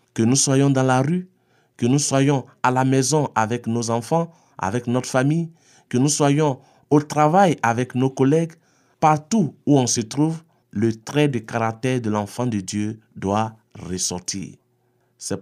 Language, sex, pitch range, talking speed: French, male, 120-150 Hz, 165 wpm